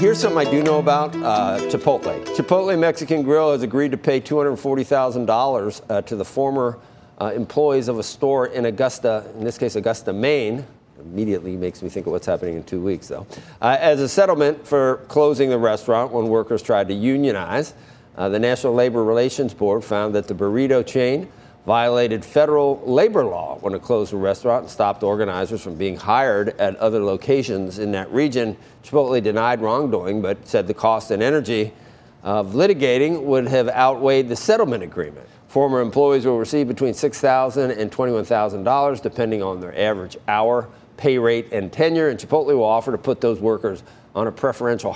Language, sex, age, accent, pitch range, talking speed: English, male, 50-69, American, 110-140 Hz, 175 wpm